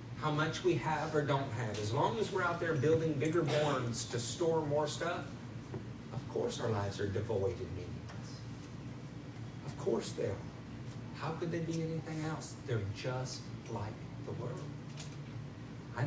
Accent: American